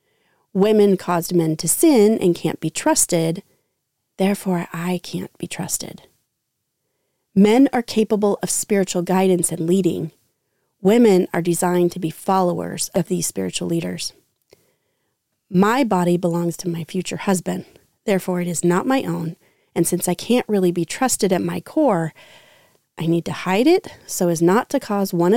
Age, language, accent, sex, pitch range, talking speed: 30-49, English, American, female, 175-225 Hz, 155 wpm